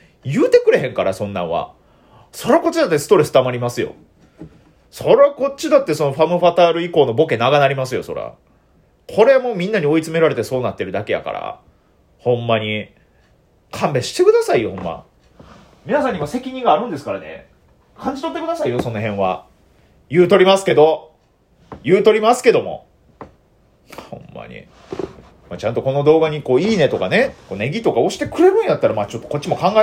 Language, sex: Japanese, male